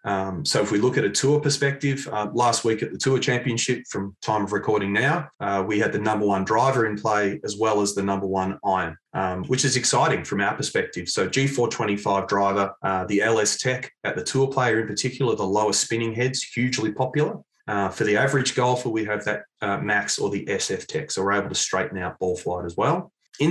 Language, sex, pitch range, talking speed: English, male, 100-130 Hz, 225 wpm